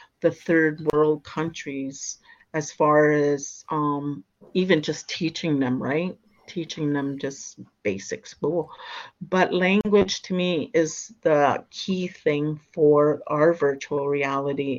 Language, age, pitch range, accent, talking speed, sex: English, 50-69, 145-165 Hz, American, 120 wpm, female